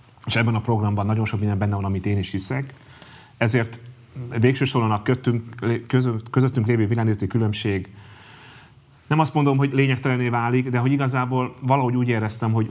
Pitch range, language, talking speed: 100-120 Hz, Hungarian, 160 wpm